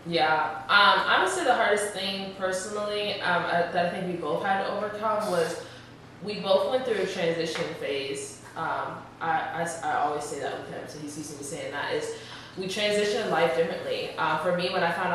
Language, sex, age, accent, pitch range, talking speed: English, female, 20-39, American, 160-185 Hz, 210 wpm